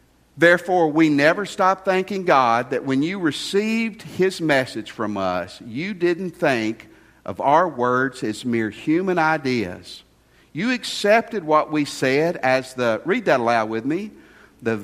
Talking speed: 150 wpm